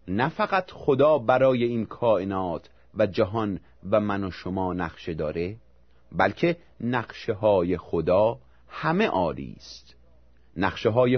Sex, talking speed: male, 115 wpm